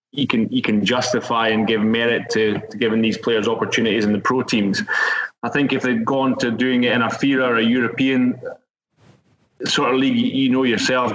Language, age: English, 20-39